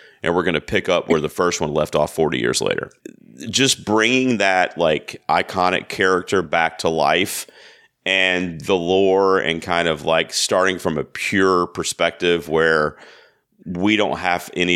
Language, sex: English, male